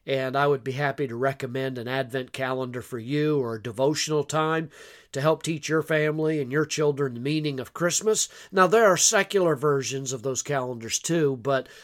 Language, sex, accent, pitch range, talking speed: English, male, American, 135-160 Hz, 195 wpm